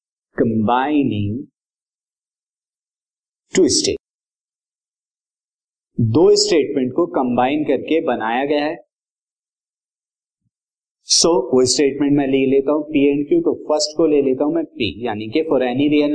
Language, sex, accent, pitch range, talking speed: Hindi, male, native, 130-165 Hz, 115 wpm